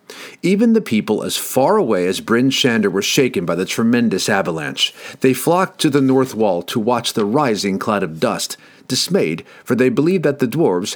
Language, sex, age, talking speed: English, male, 50-69, 190 wpm